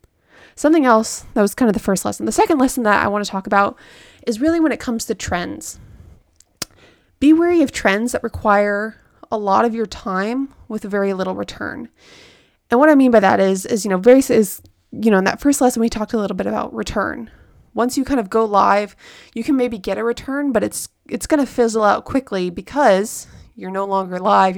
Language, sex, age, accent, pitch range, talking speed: English, female, 20-39, American, 200-250 Hz, 220 wpm